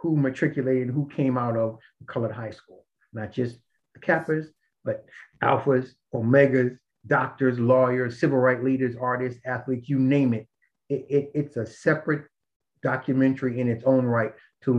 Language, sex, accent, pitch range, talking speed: English, male, American, 120-145 Hz, 155 wpm